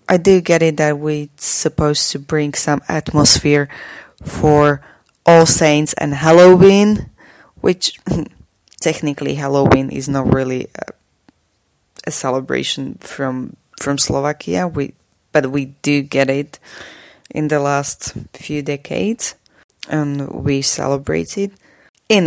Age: 20-39